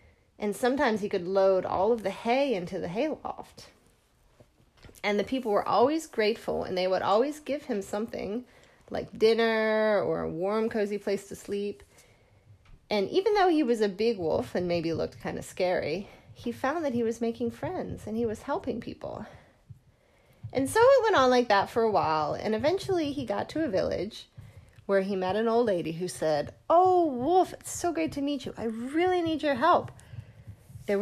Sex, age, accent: female, 30-49, American